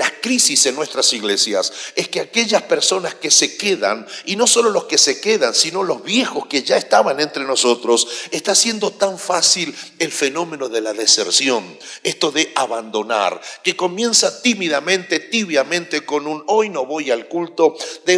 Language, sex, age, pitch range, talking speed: Spanish, male, 50-69, 140-230 Hz, 170 wpm